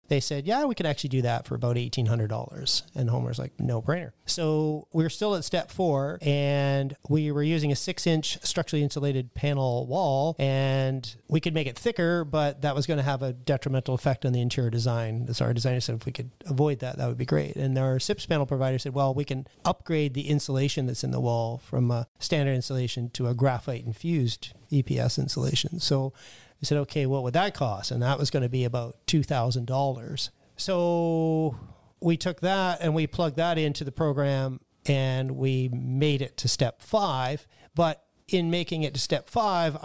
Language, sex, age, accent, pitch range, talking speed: English, male, 40-59, American, 130-155 Hz, 195 wpm